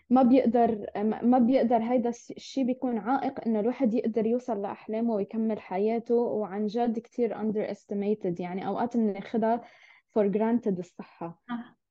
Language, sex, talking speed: Arabic, female, 130 wpm